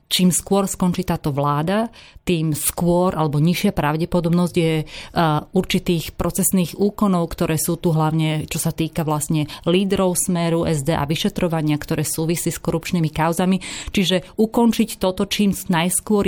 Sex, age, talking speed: female, 30-49, 140 wpm